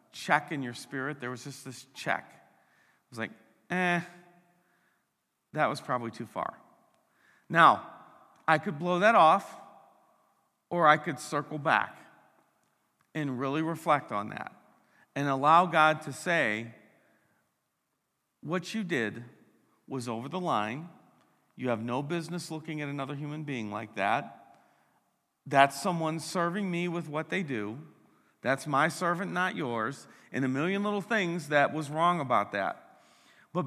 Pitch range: 135-175 Hz